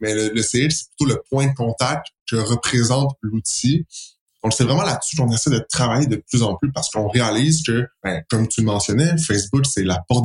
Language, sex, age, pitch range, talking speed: French, male, 20-39, 105-140 Hz, 215 wpm